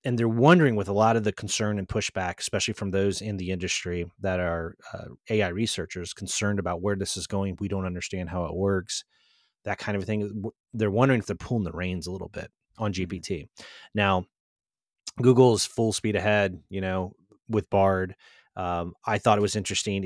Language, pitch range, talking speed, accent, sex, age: English, 95-110 Hz, 195 wpm, American, male, 30-49